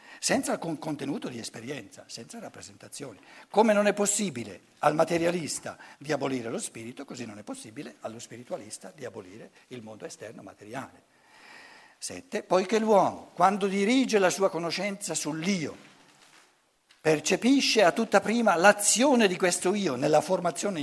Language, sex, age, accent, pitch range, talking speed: Italian, male, 60-79, native, 140-210 Hz, 140 wpm